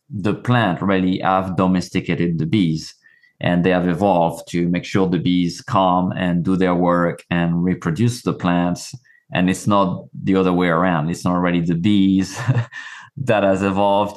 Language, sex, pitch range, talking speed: English, male, 90-110 Hz, 170 wpm